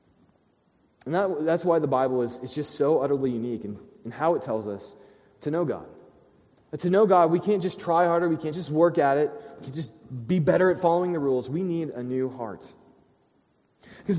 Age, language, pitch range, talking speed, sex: 30-49, English, 145-205 Hz, 215 wpm, male